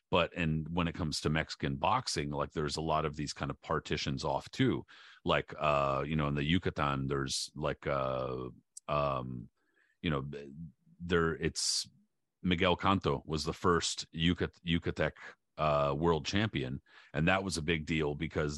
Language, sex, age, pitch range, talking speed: English, male, 40-59, 75-85 Hz, 165 wpm